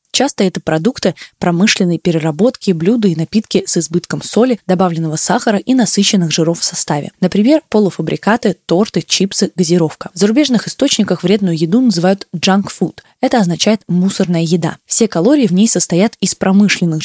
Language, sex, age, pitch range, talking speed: Russian, female, 20-39, 170-210 Hz, 150 wpm